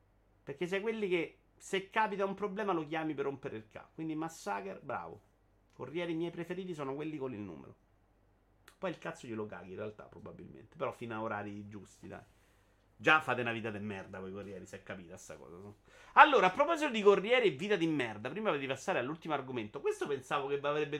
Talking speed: 205 wpm